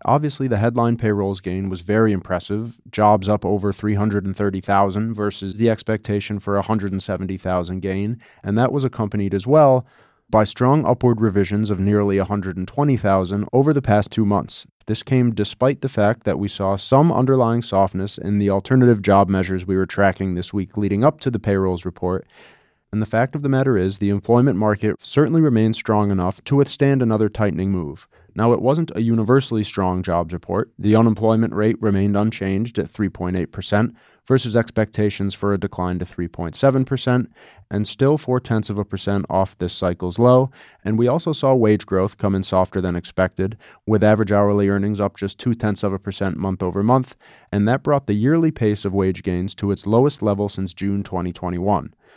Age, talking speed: 30-49, 175 wpm